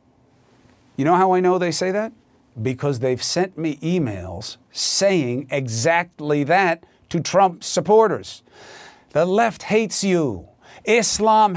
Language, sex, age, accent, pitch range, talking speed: English, male, 50-69, American, 135-210 Hz, 125 wpm